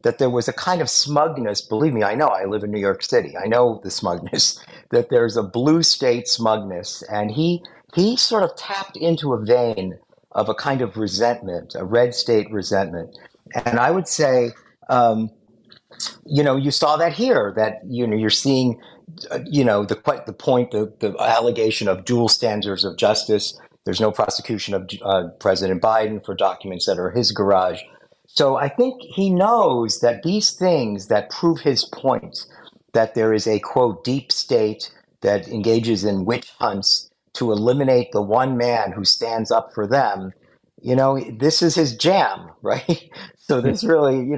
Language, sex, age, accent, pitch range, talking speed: English, male, 50-69, American, 110-155 Hz, 180 wpm